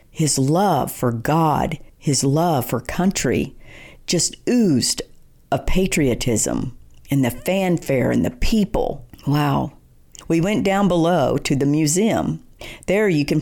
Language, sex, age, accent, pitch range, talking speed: English, female, 50-69, American, 125-180 Hz, 130 wpm